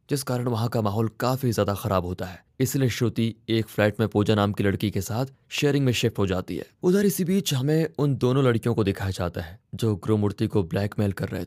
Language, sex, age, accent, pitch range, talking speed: Hindi, male, 20-39, native, 100-125 Hz, 230 wpm